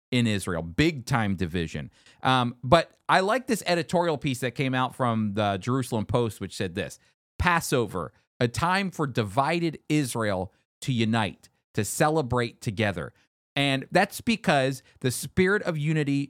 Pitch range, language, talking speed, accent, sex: 115-155 Hz, English, 145 wpm, American, male